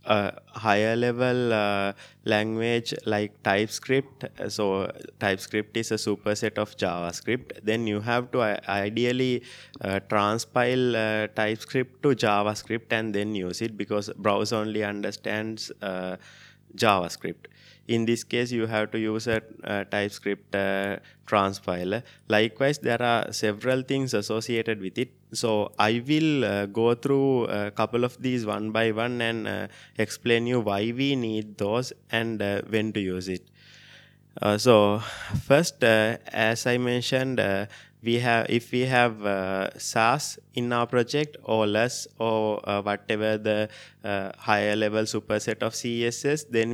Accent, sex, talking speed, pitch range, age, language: Indian, male, 150 wpm, 105-120 Hz, 20-39, English